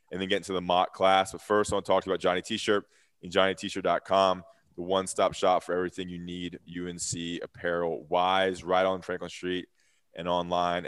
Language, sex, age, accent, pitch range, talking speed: English, male, 20-39, American, 85-100 Hz, 215 wpm